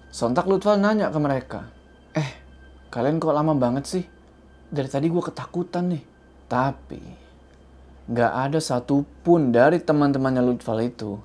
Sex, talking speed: male, 130 wpm